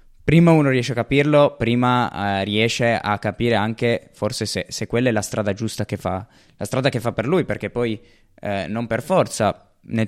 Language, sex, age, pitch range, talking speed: Italian, male, 20-39, 105-120 Hz, 200 wpm